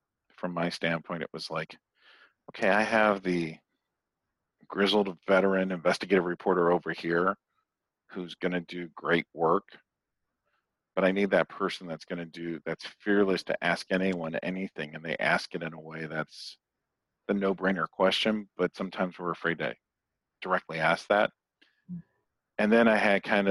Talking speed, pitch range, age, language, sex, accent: 155 wpm, 85-100 Hz, 40-59, English, male, American